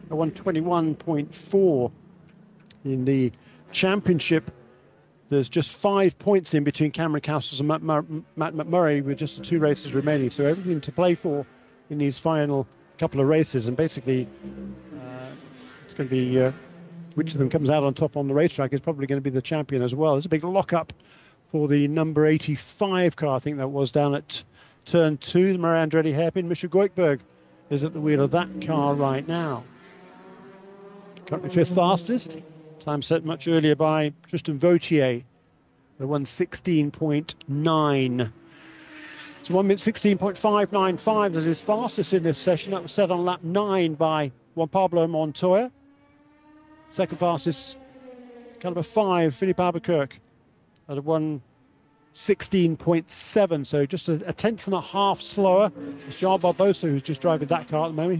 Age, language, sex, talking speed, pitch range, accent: 50-69, English, male, 160 wpm, 145-185 Hz, British